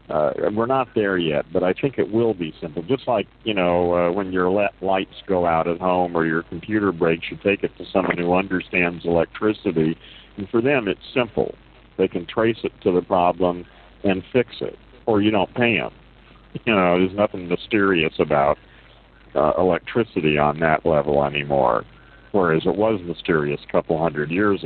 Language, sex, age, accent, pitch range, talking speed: English, male, 50-69, American, 80-100 Hz, 185 wpm